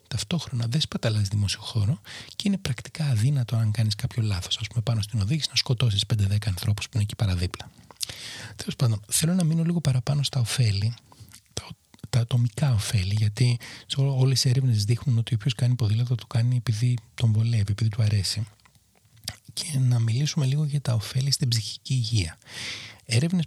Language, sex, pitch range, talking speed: Greek, male, 110-130 Hz, 170 wpm